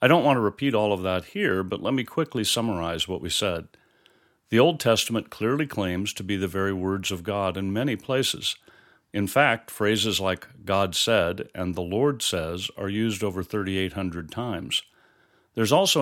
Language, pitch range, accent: English, 95-115 Hz, American